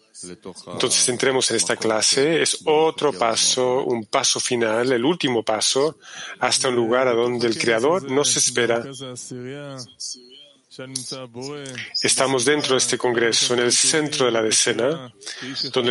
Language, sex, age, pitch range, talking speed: Spanish, male, 40-59, 115-135 Hz, 135 wpm